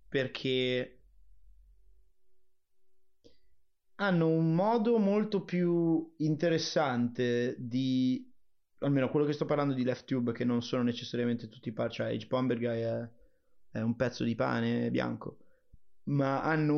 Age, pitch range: 30-49, 130-200 Hz